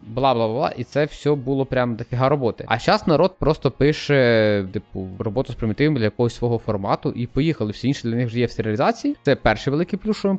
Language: Ukrainian